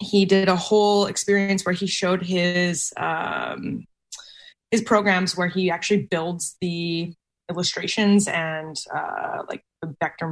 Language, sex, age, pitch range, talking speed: English, female, 20-39, 165-200 Hz, 135 wpm